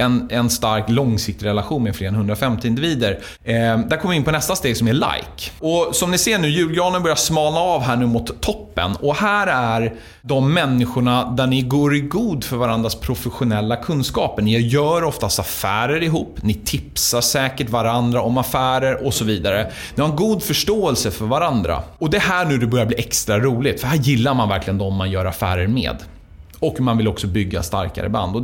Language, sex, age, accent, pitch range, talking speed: Swedish, male, 30-49, native, 110-145 Hz, 200 wpm